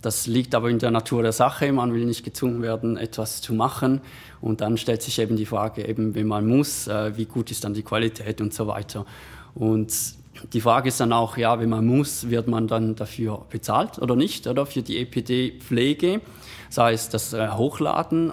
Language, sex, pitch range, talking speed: German, male, 110-130 Hz, 200 wpm